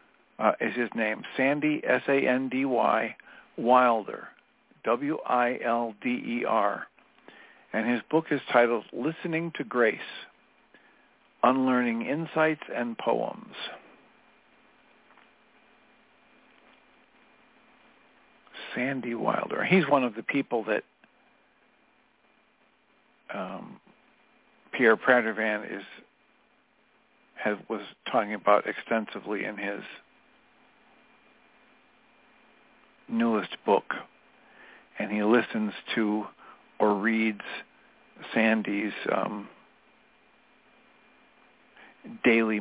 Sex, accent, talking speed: male, American, 70 wpm